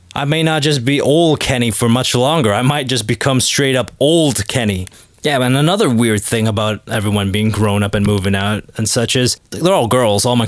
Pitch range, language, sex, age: 115-155 Hz, English, male, 20-39